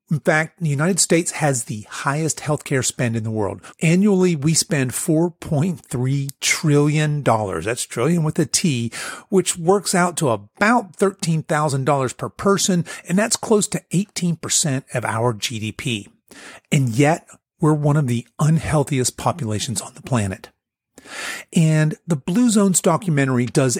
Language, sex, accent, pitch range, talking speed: English, male, American, 125-175 Hz, 140 wpm